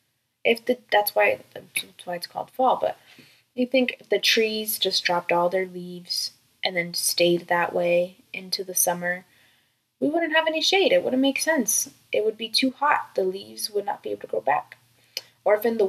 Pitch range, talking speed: 165-240 Hz, 210 wpm